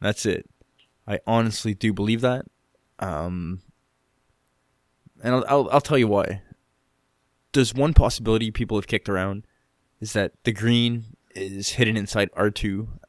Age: 20-39